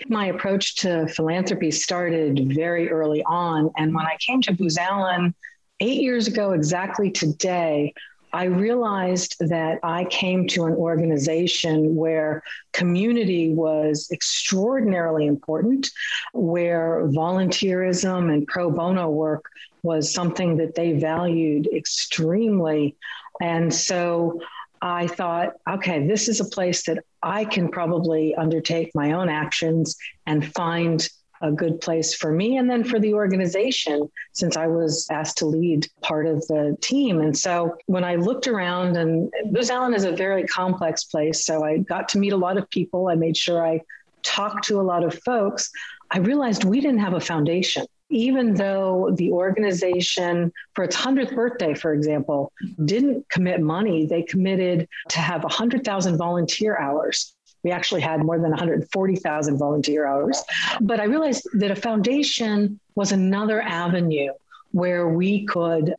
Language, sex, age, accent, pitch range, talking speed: English, female, 50-69, American, 160-195 Hz, 150 wpm